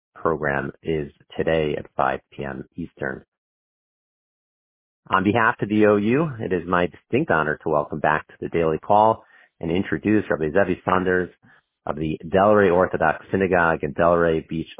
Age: 40-59